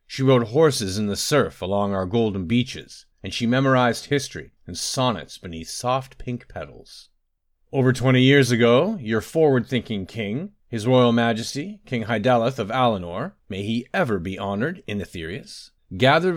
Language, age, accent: English, 40-59, American